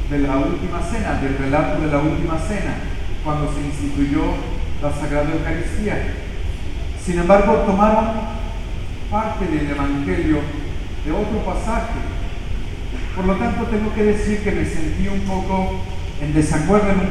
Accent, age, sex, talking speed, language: Mexican, 50-69, male, 140 wpm, English